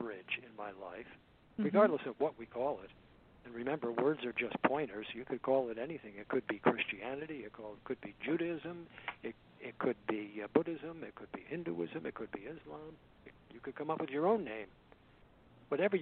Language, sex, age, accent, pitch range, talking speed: English, male, 60-79, American, 115-150 Hz, 190 wpm